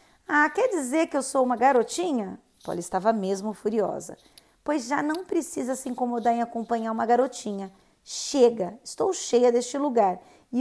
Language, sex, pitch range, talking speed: Portuguese, female, 200-265 Hz, 160 wpm